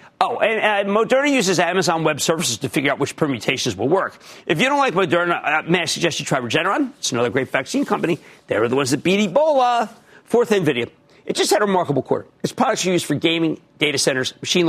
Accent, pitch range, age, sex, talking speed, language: American, 150-225 Hz, 50-69, male, 225 wpm, English